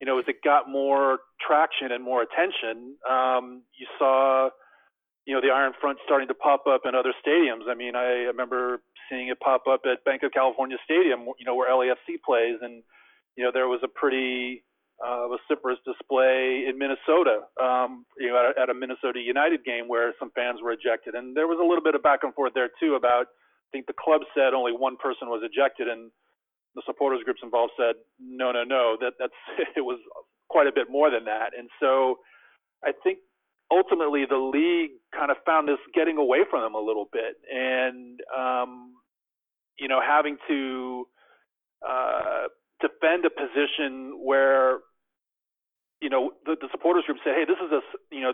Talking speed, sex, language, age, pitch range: 190 wpm, male, English, 40-59, 125-145 Hz